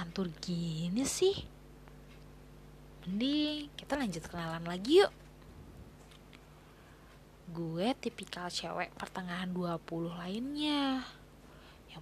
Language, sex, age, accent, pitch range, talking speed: Indonesian, female, 20-39, native, 165-245 Hz, 80 wpm